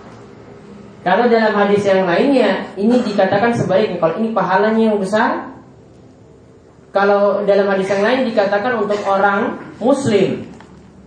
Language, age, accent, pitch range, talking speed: Indonesian, 30-49, native, 160-205 Hz, 120 wpm